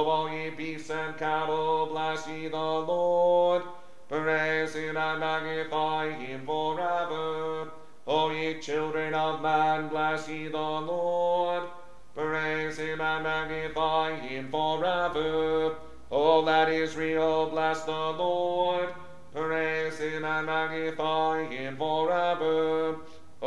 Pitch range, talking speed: 155-160 Hz, 105 wpm